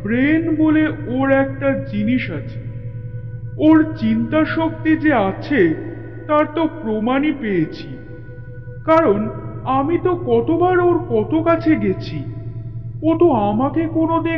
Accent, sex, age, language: native, male, 50-69, Bengali